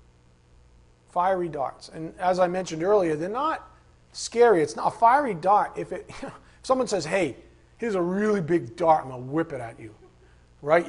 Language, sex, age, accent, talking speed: English, male, 40-59, American, 200 wpm